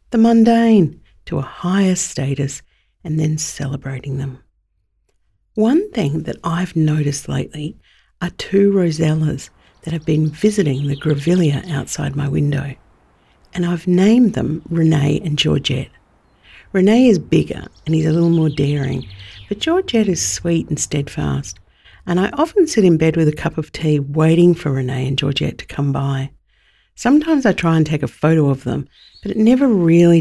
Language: English